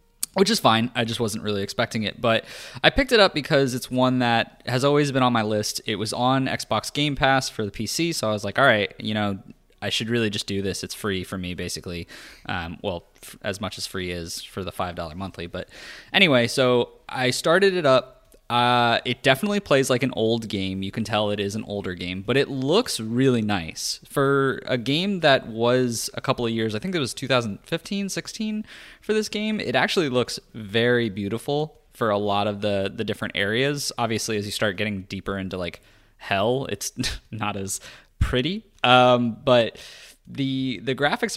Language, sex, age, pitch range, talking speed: English, male, 20-39, 105-130 Hz, 205 wpm